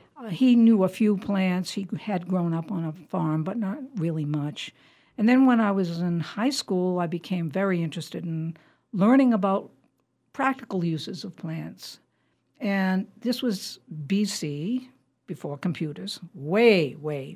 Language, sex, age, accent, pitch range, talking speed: English, female, 60-79, American, 165-215 Hz, 150 wpm